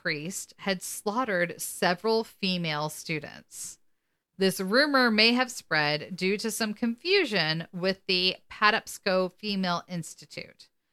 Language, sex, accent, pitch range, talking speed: English, female, American, 165-210 Hz, 110 wpm